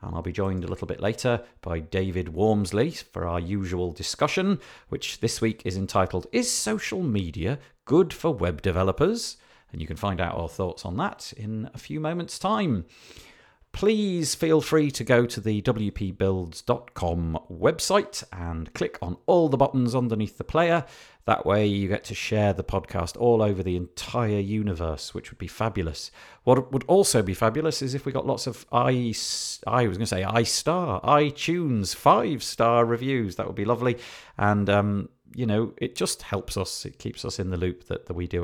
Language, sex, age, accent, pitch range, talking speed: English, male, 40-59, British, 90-125 Hz, 185 wpm